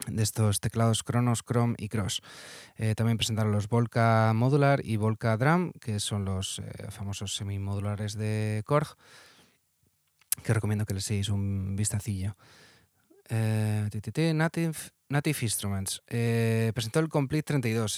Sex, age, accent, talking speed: male, 20-39, Spanish, 135 wpm